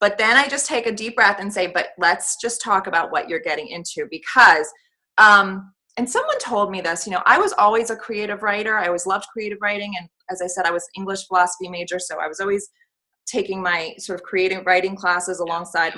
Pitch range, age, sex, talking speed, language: 180-240 Hz, 20-39, female, 225 wpm, English